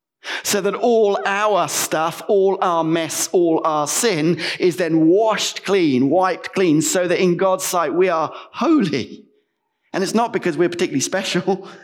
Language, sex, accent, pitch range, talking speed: English, male, British, 155-205 Hz, 160 wpm